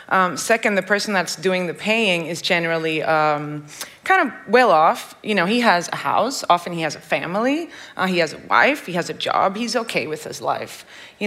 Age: 20-39